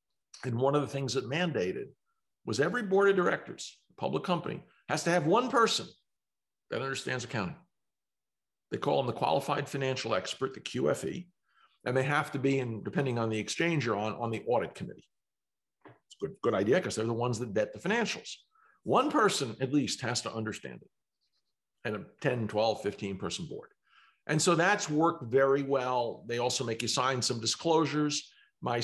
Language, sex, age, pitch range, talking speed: English, male, 50-69, 120-150 Hz, 185 wpm